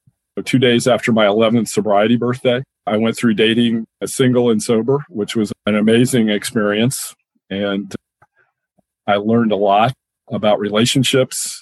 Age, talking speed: 50-69, 140 wpm